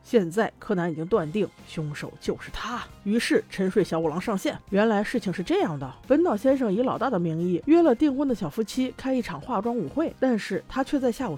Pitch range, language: 175-265 Hz, Chinese